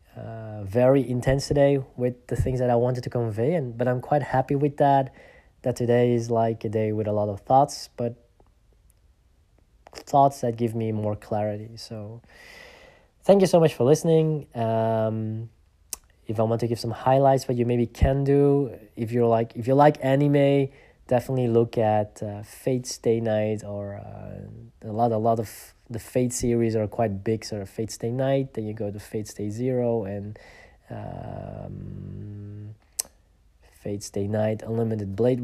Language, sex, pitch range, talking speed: English, male, 100-125 Hz, 175 wpm